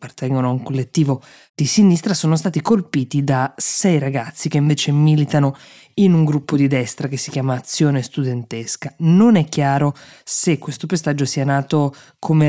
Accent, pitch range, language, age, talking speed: native, 135-155 Hz, Italian, 20-39, 165 wpm